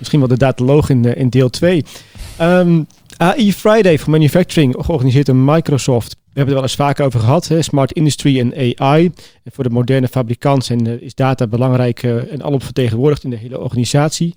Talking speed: 190 wpm